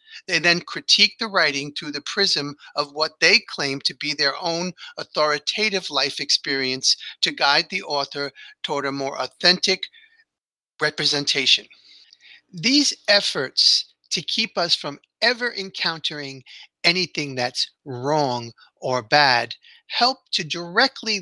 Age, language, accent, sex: 40-59, English, American, male